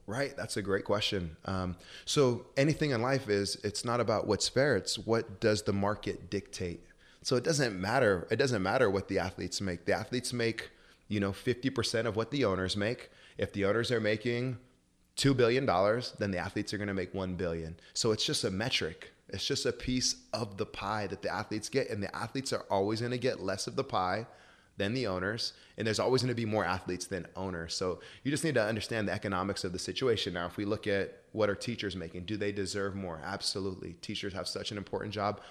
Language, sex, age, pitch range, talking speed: English, male, 20-39, 95-115 Hz, 225 wpm